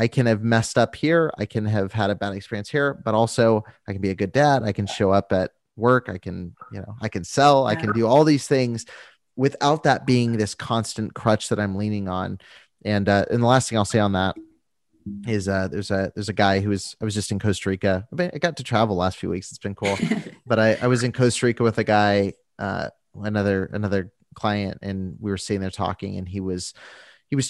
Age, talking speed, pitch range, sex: 30-49, 240 wpm, 95-115 Hz, male